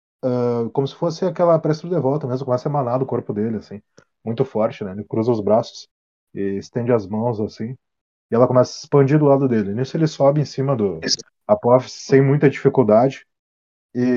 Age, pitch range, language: 20-39, 120-145 Hz, Portuguese